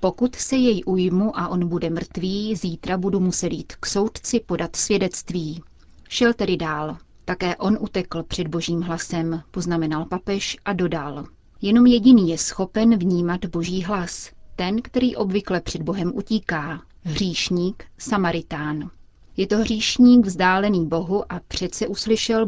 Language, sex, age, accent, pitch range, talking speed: Czech, female, 30-49, native, 170-205 Hz, 140 wpm